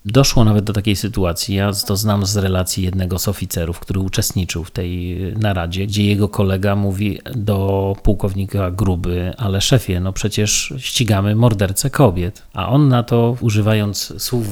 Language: Polish